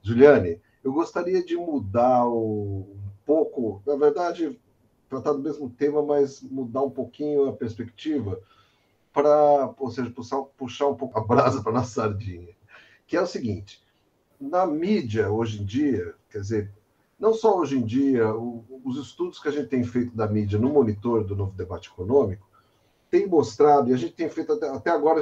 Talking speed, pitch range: 175 wpm, 110-150 Hz